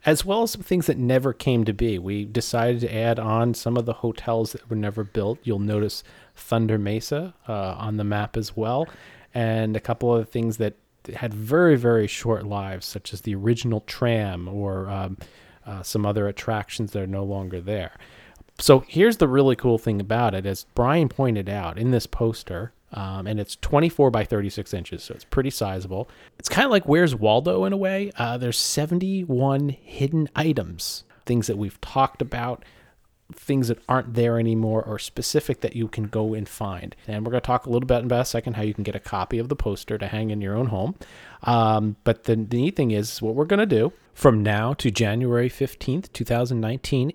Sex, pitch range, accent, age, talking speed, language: male, 105-130 Hz, American, 30-49, 205 wpm, English